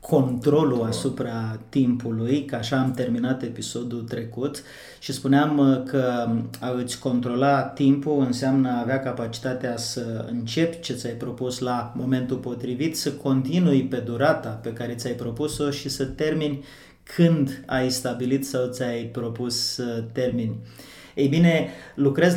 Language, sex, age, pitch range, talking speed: Romanian, male, 30-49, 120-140 Hz, 125 wpm